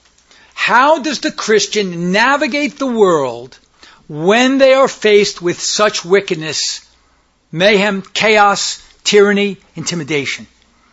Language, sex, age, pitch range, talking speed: English, male, 60-79, 185-240 Hz, 100 wpm